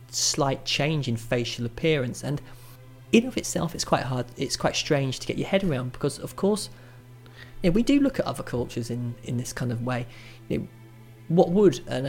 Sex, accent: male, British